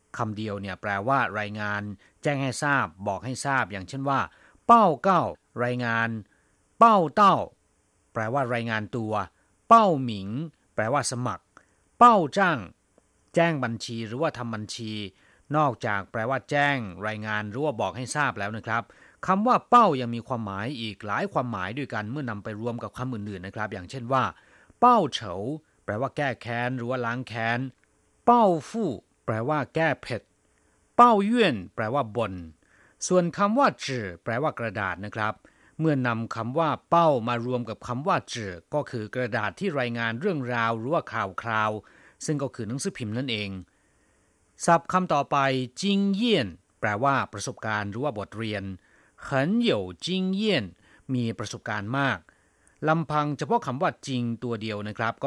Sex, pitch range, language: male, 105-150 Hz, Thai